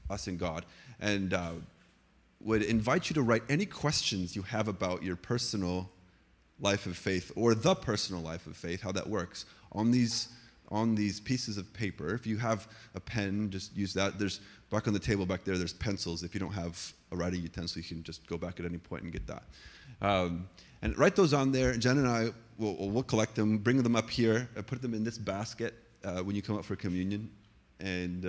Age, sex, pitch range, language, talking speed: 30-49, male, 95-120 Hz, English, 215 wpm